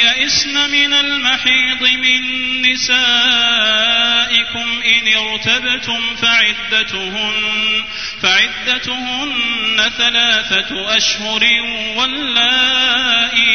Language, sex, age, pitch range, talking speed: Arabic, male, 30-49, 215-255 Hz, 55 wpm